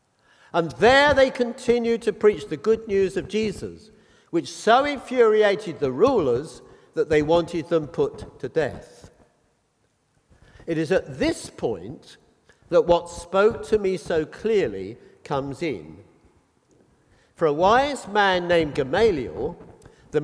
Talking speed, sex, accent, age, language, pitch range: 130 wpm, male, British, 50-69, English, 165-225 Hz